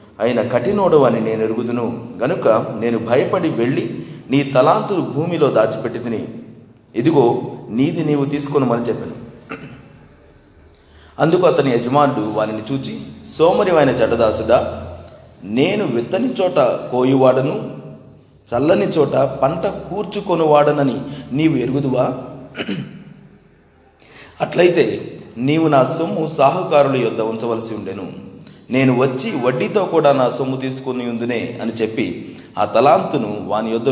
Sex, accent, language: male, native, Telugu